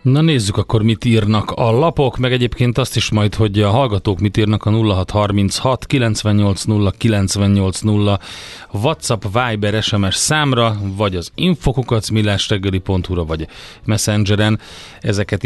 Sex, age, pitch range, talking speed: male, 30-49, 100-115 Hz, 125 wpm